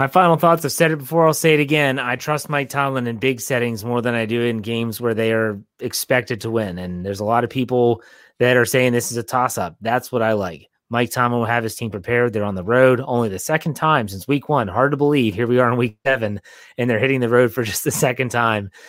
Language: English